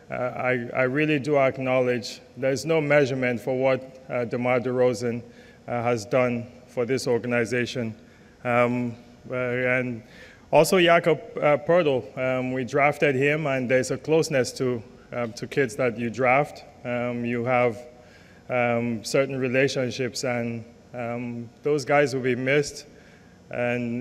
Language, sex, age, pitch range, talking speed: English, male, 20-39, 120-135 Hz, 135 wpm